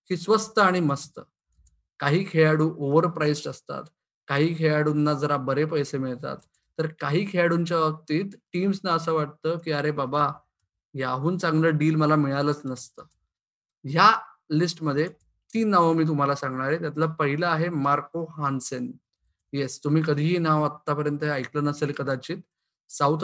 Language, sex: Marathi, male